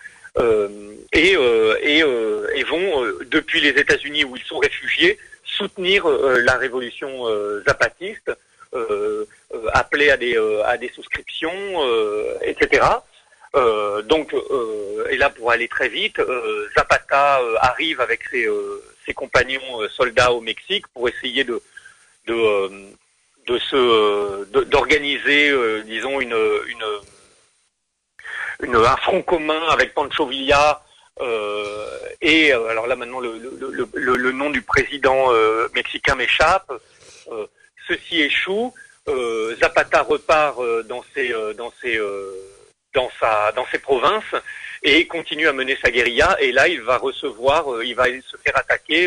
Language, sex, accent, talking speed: French, male, French, 155 wpm